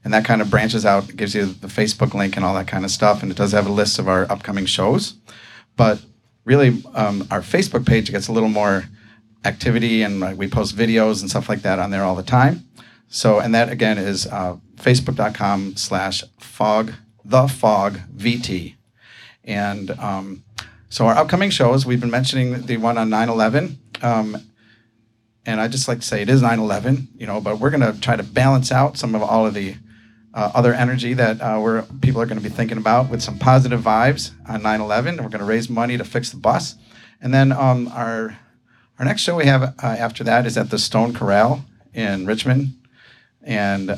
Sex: male